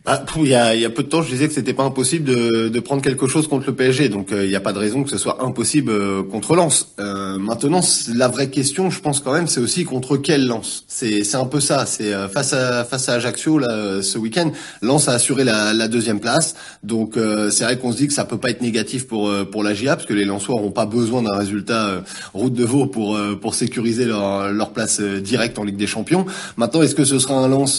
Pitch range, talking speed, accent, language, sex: 110-135 Hz, 265 wpm, French, French, male